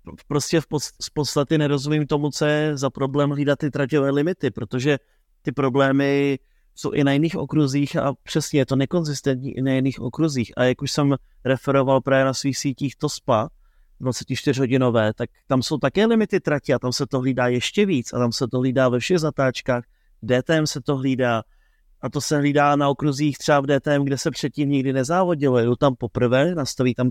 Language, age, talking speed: Czech, 30-49, 190 wpm